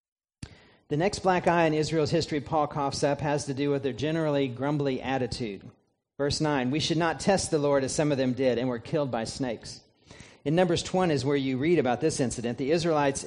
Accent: American